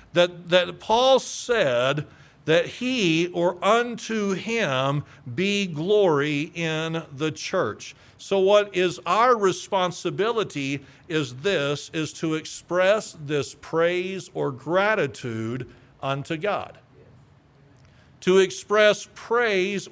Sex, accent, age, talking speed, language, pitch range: male, American, 50-69, 100 wpm, English, 145-200 Hz